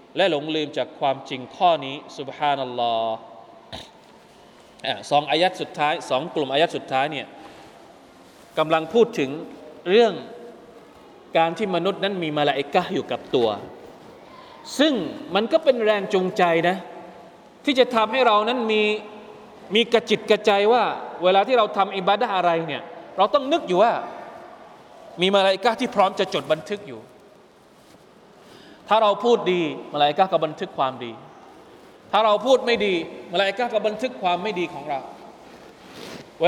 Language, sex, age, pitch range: Thai, male, 20-39, 165-235 Hz